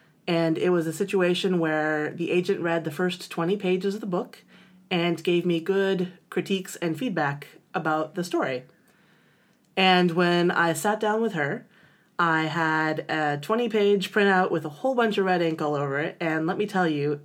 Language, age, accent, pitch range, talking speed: English, 30-49, American, 160-190 Hz, 185 wpm